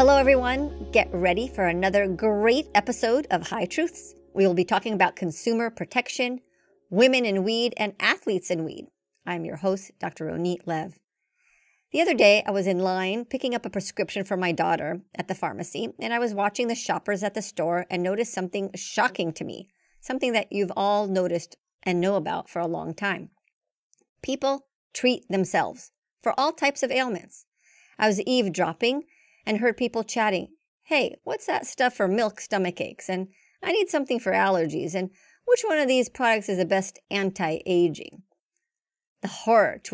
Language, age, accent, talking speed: English, 40-59, American, 175 wpm